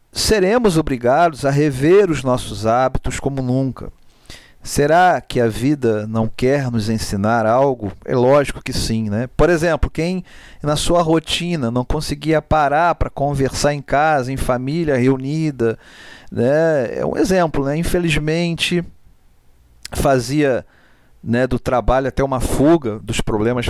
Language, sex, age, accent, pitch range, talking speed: Portuguese, male, 40-59, Brazilian, 120-155 Hz, 135 wpm